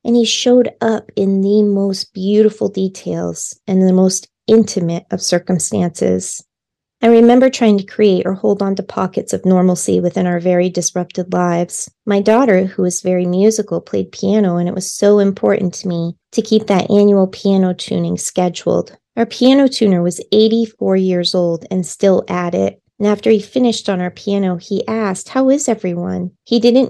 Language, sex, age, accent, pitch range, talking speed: English, female, 30-49, American, 180-215 Hz, 175 wpm